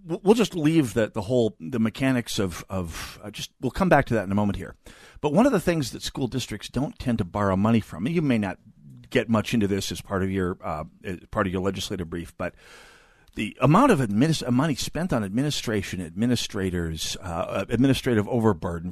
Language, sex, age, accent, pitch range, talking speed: English, male, 50-69, American, 100-135 Hz, 210 wpm